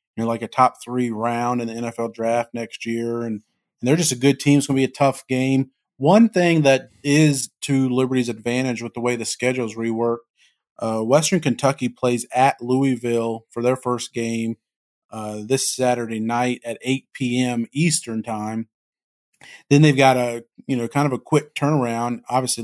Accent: American